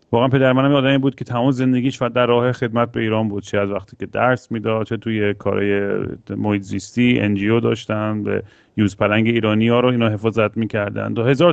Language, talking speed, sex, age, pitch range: Persian, 210 wpm, male, 30-49, 105-130 Hz